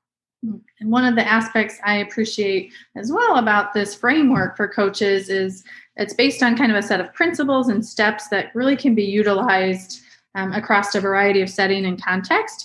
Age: 30-49